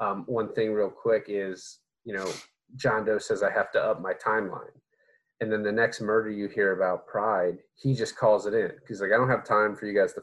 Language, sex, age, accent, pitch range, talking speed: English, male, 30-49, American, 100-130 Hz, 240 wpm